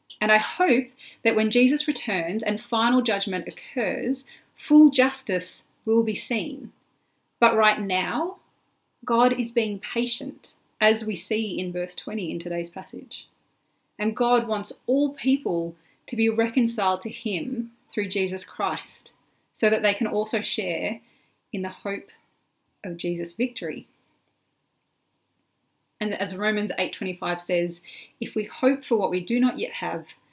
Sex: female